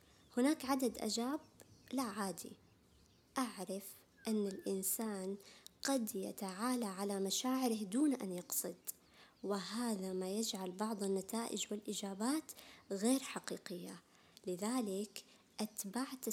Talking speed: 90 wpm